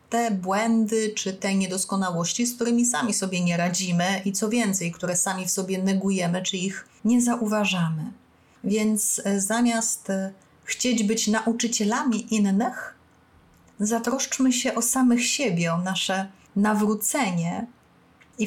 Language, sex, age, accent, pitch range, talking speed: Polish, female, 30-49, native, 190-235 Hz, 125 wpm